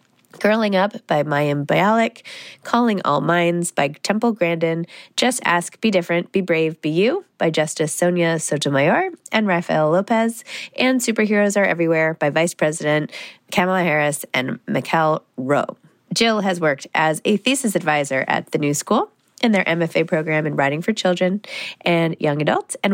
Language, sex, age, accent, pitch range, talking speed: English, female, 20-39, American, 155-205 Hz, 160 wpm